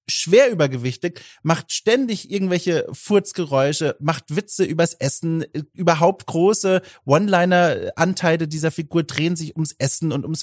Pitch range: 150-190 Hz